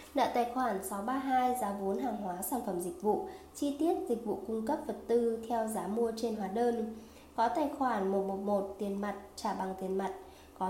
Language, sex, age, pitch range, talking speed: Vietnamese, female, 20-39, 195-245 Hz, 210 wpm